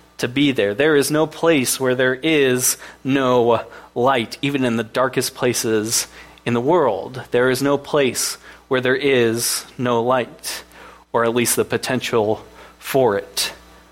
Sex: male